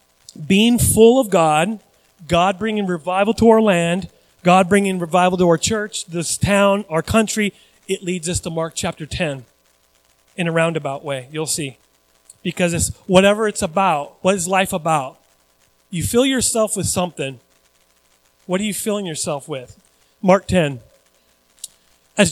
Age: 30-49